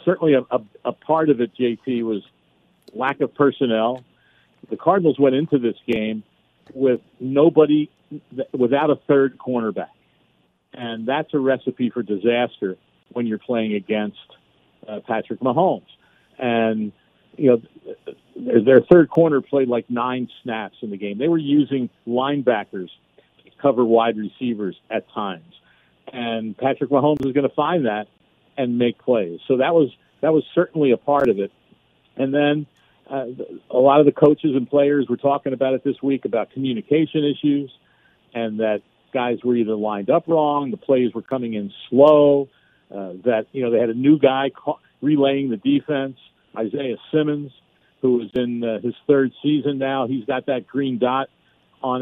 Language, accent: English, American